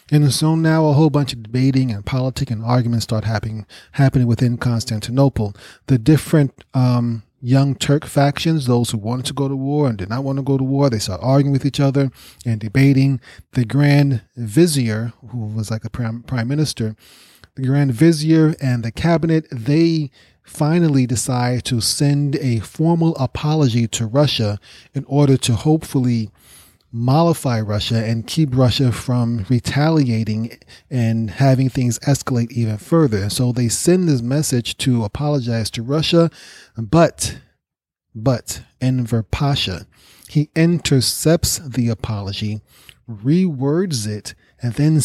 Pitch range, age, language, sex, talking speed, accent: 115-145 Hz, 30-49, English, male, 145 wpm, American